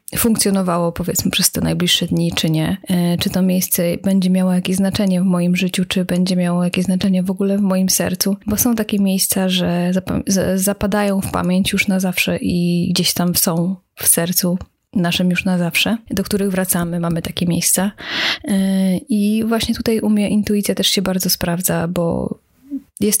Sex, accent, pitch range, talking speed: female, native, 175-200 Hz, 175 wpm